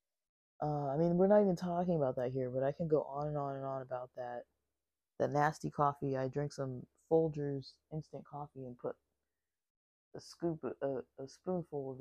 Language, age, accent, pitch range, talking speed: English, 20-39, American, 130-150 Hz, 195 wpm